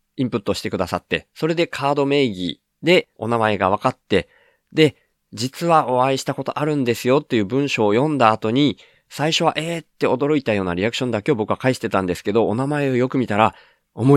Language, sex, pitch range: Japanese, male, 100-135 Hz